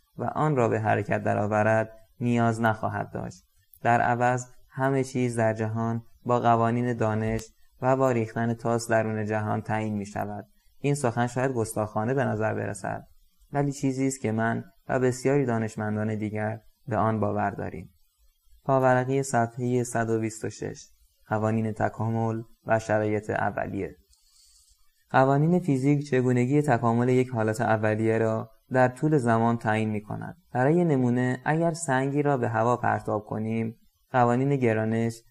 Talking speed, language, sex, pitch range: 135 wpm, Persian, male, 110-130 Hz